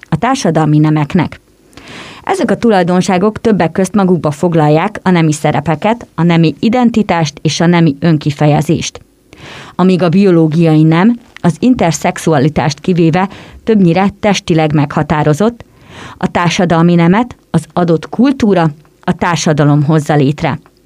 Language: Hungarian